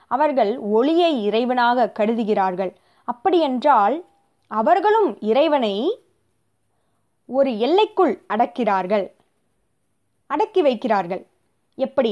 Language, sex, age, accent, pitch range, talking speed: Tamil, female, 20-39, native, 205-295 Hz, 65 wpm